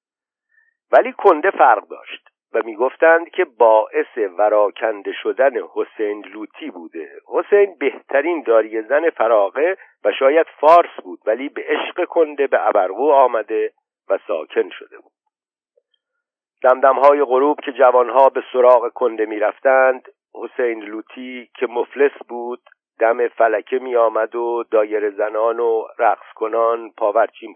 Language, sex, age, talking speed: Persian, male, 50-69, 130 wpm